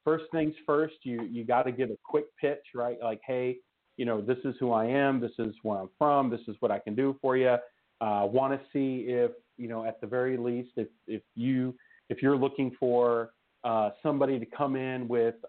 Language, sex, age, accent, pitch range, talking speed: English, male, 40-59, American, 115-140 Hz, 230 wpm